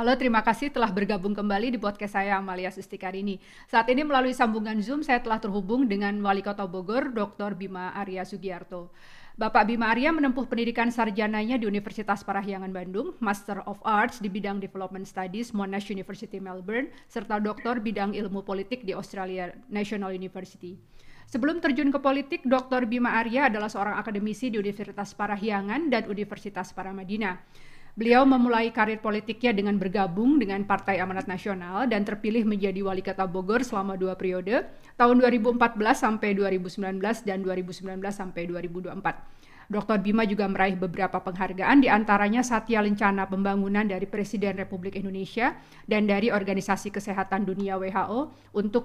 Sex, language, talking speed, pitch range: female, Indonesian, 140 wpm, 195-230 Hz